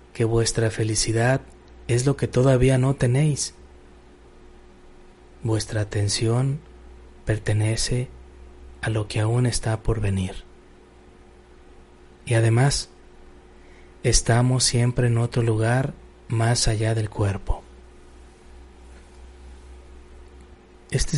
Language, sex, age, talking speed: Spanish, male, 30-49, 90 wpm